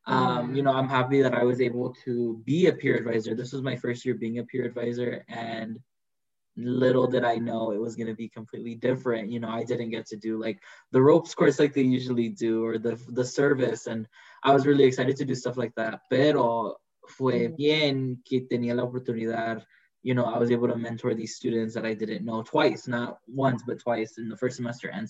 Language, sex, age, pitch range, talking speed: Spanish, male, 20-39, 115-130 Hz, 220 wpm